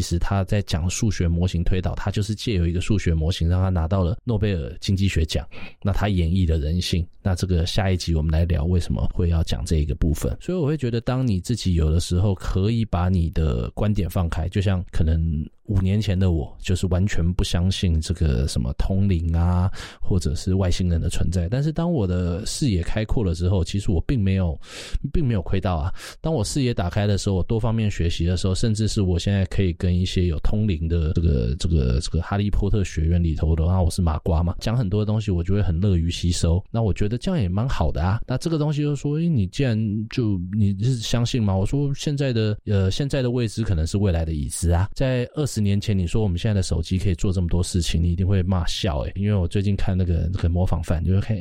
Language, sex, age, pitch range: Chinese, male, 20-39, 85-105 Hz